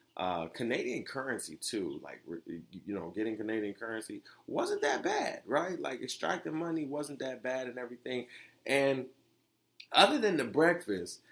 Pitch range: 95-140 Hz